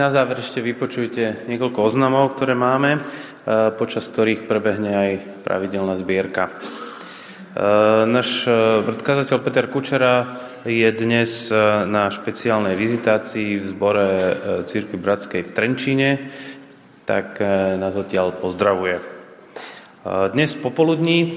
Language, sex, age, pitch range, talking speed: Slovak, male, 30-49, 100-120 Hz, 100 wpm